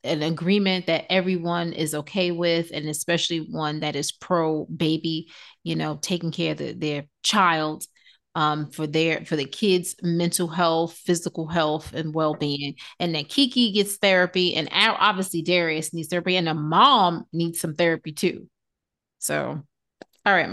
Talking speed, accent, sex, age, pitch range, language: 165 wpm, American, female, 30-49, 160-190 Hz, English